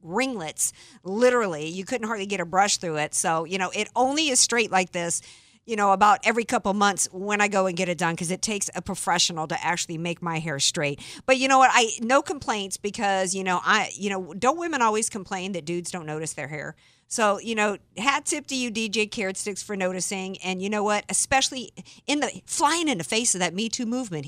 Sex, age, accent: female, 50-69, American